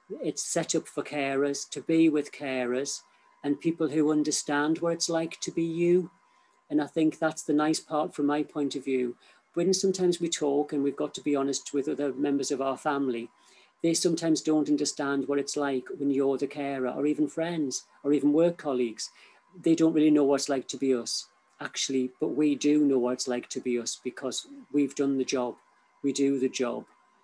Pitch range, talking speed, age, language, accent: 135-155 Hz, 210 wpm, 50-69, English, British